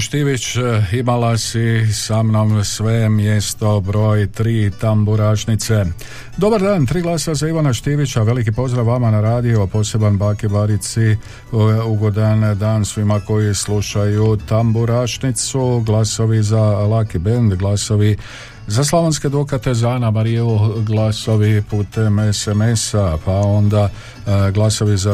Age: 50-69